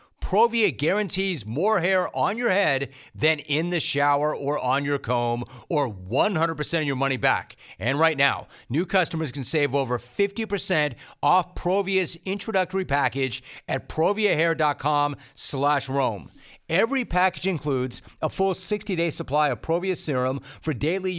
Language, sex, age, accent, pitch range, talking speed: English, male, 40-59, American, 135-175 Hz, 140 wpm